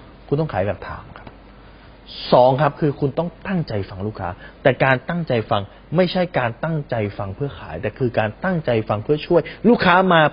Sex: male